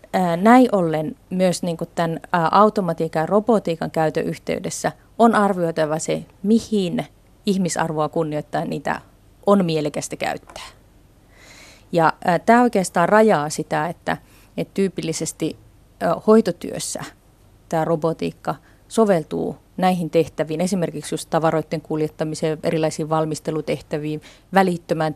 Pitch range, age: 155-185 Hz, 30-49